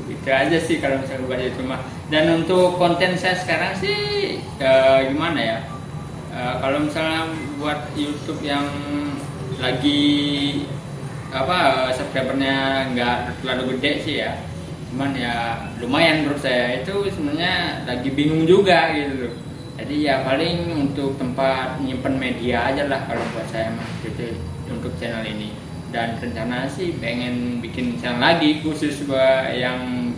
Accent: native